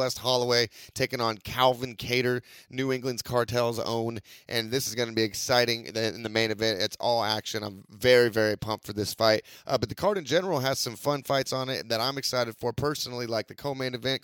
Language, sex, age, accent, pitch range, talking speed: English, male, 30-49, American, 115-135 Hz, 220 wpm